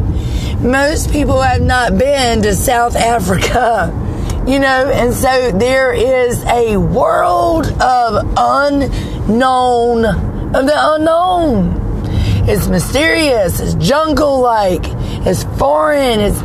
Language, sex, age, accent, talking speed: English, female, 40-59, American, 100 wpm